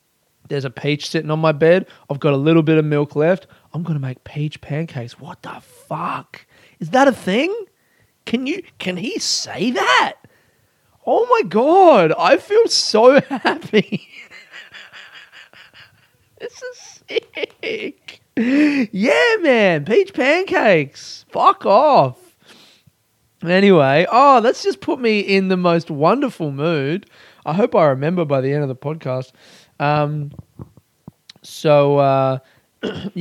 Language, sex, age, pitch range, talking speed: English, male, 20-39, 140-195 Hz, 135 wpm